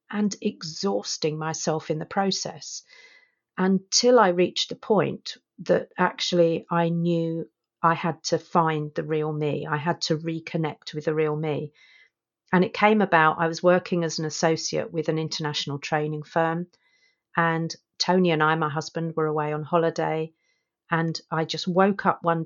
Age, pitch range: 50-69, 150-175 Hz